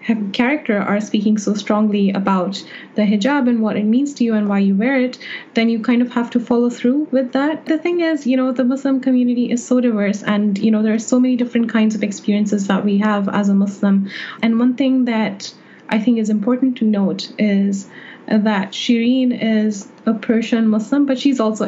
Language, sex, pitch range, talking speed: English, female, 205-245 Hz, 215 wpm